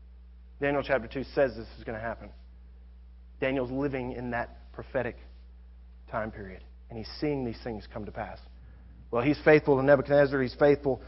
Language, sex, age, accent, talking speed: English, male, 30-49, American, 170 wpm